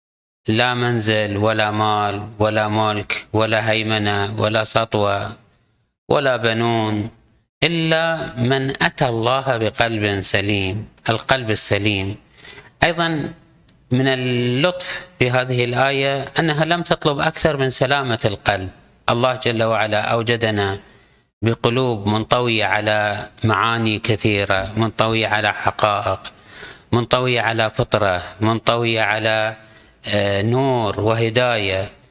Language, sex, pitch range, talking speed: Arabic, male, 110-135 Hz, 95 wpm